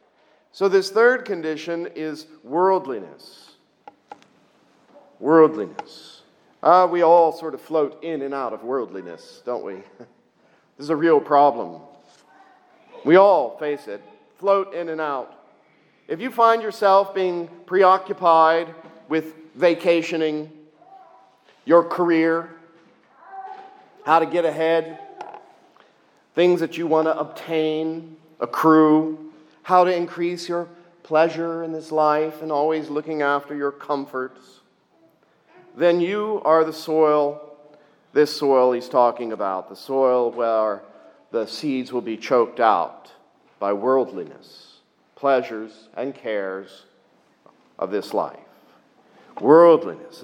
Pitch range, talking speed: 140-170 Hz, 115 wpm